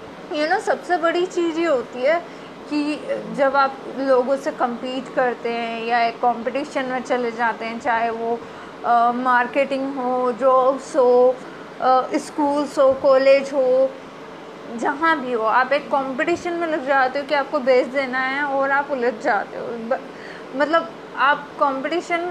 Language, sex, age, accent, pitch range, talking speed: Hindi, female, 20-39, native, 250-305 Hz, 155 wpm